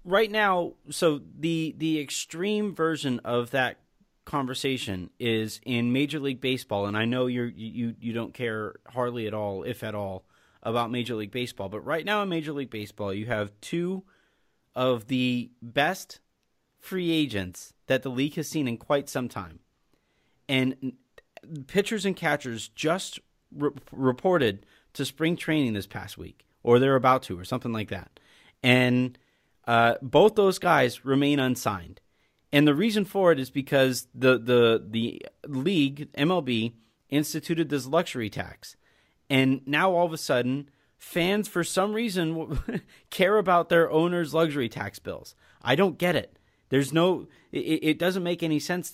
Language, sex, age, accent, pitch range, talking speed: English, male, 30-49, American, 120-165 Hz, 160 wpm